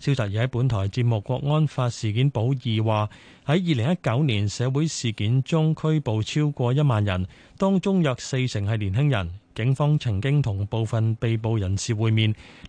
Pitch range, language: 110-150 Hz, Chinese